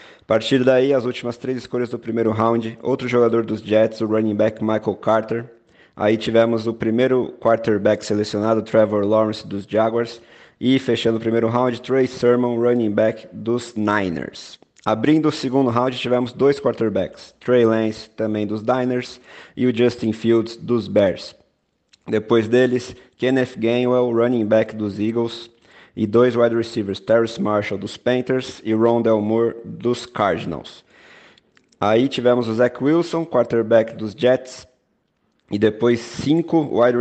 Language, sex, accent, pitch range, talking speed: Portuguese, male, Brazilian, 110-125 Hz, 150 wpm